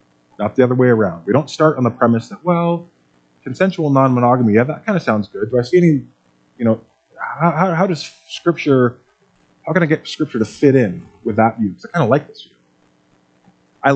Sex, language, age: male, English, 30-49